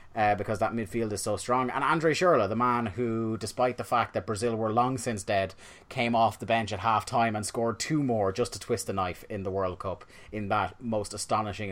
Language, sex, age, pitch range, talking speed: English, male, 30-49, 105-125 Hz, 235 wpm